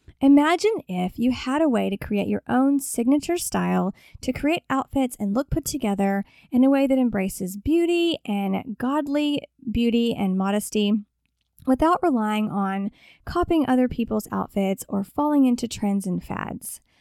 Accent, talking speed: American, 150 wpm